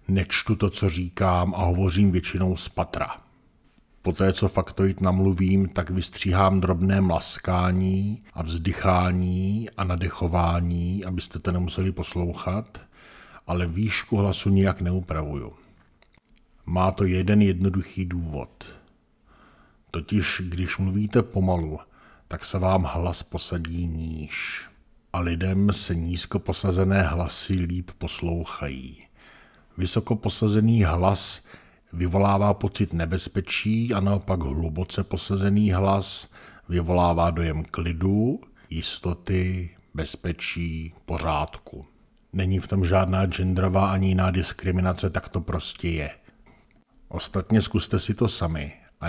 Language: Czech